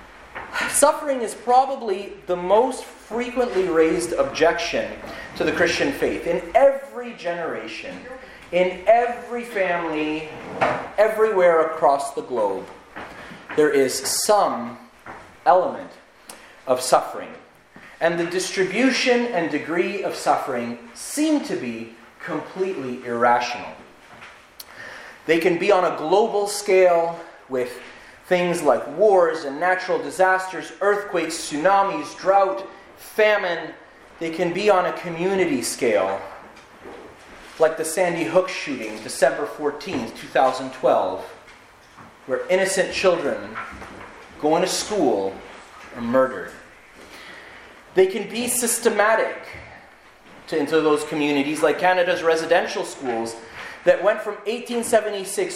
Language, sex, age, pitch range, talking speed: English, male, 30-49, 160-205 Hz, 105 wpm